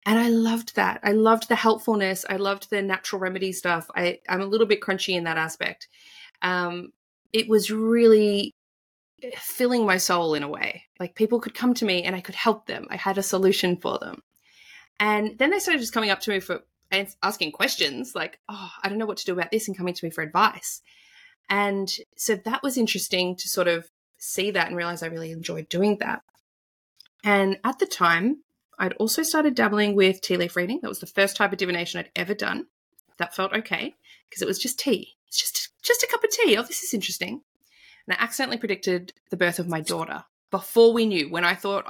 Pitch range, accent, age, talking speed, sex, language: 180-230 Hz, Australian, 20-39, 215 wpm, female, English